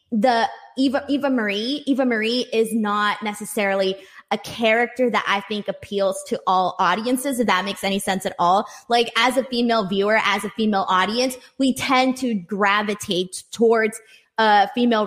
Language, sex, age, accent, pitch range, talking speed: English, female, 20-39, American, 195-240 Hz, 165 wpm